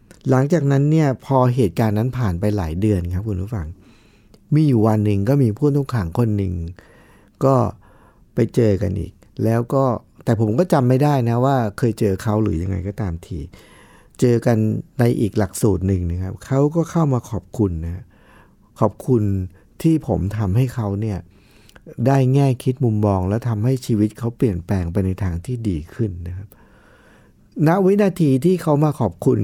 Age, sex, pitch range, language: 60-79, male, 100-130 Hz, Thai